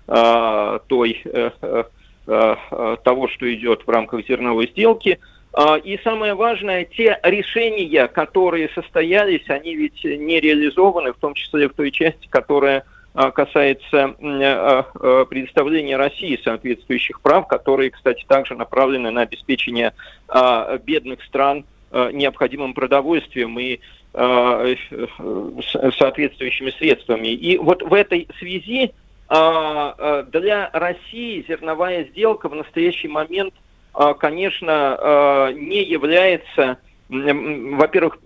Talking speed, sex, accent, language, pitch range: 95 wpm, male, native, Russian, 130-175 Hz